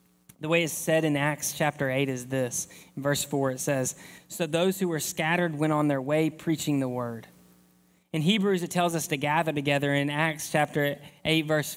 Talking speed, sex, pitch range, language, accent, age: 205 wpm, male, 155-210 Hz, English, American, 20-39